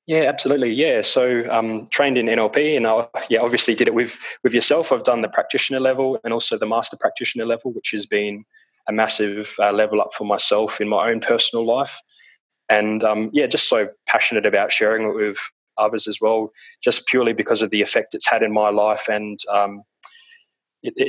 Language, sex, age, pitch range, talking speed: English, male, 20-39, 105-125 Hz, 200 wpm